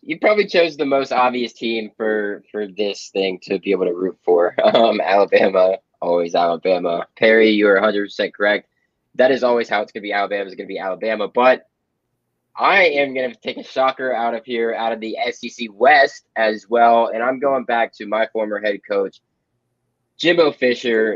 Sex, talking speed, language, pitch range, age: male, 195 wpm, English, 105-130 Hz, 20-39